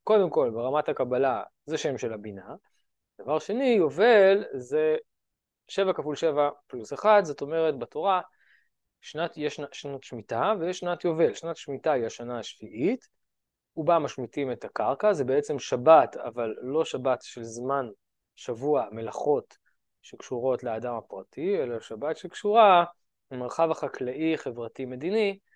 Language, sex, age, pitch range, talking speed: Hebrew, male, 20-39, 135-205 Hz, 130 wpm